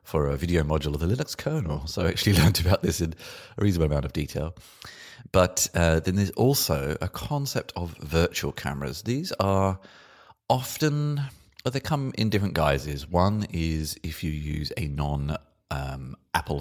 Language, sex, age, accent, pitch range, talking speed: English, male, 30-49, British, 75-105 Hz, 165 wpm